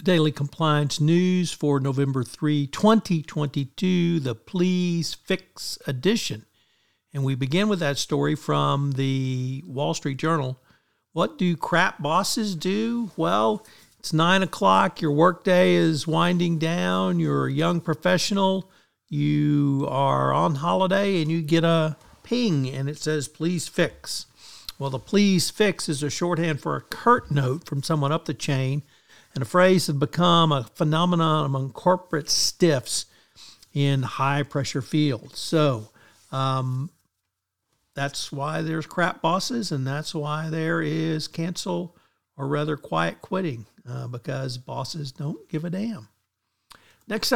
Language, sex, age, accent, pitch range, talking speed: English, male, 50-69, American, 140-175 Hz, 135 wpm